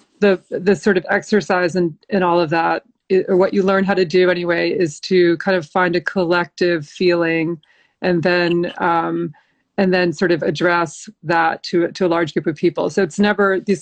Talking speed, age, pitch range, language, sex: 205 wpm, 30-49, 165-195 Hz, English, female